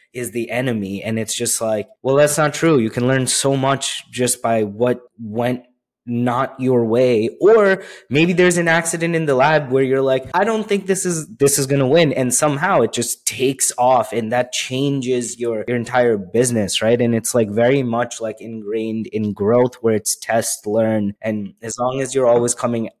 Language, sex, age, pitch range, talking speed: English, male, 20-39, 110-130 Hz, 205 wpm